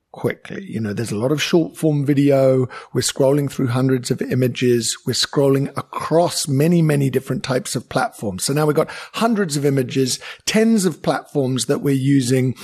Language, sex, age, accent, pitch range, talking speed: English, male, 50-69, British, 130-170 Hz, 180 wpm